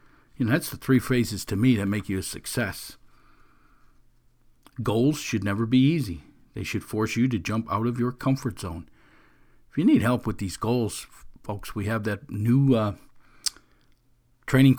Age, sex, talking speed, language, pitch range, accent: 50-69, male, 175 wpm, English, 105-125 Hz, American